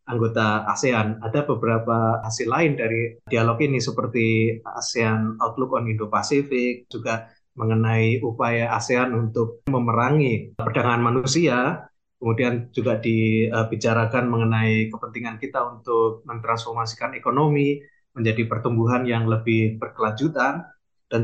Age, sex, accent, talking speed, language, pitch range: 20-39, male, native, 105 wpm, Indonesian, 115-140 Hz